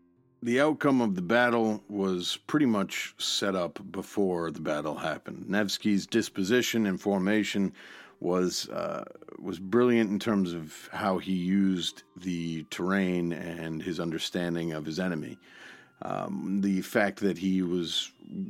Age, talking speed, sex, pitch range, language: 40-59, 135 wpm, male, 95-115 Hz, English